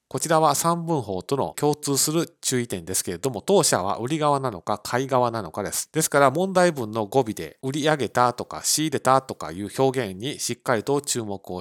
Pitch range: 95-140 Hz